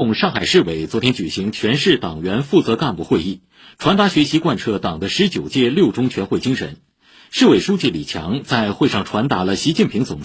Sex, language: male, Chinese